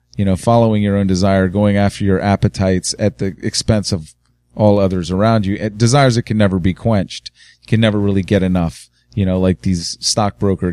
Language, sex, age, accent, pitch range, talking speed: English, male, 30-49, American, 95-115 Hz, 200 wpm